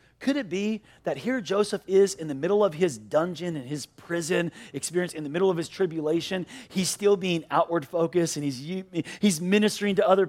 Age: 40-59